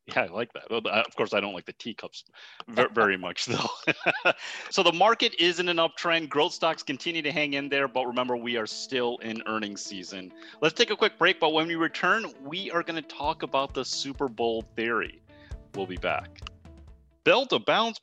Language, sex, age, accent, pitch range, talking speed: English, male, 30-49, American, 115-180 Hz, 205 wpm